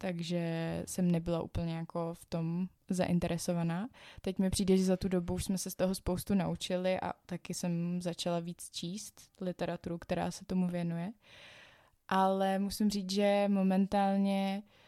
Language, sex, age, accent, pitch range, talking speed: Czech, female, 20-39, native, 180-195 Hz, 155 wpm